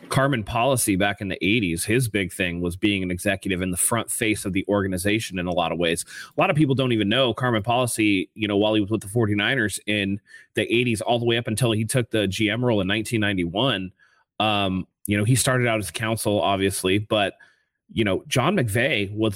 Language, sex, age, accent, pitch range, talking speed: English, male, 30-49, American, 100-115 Hz, 225 wpm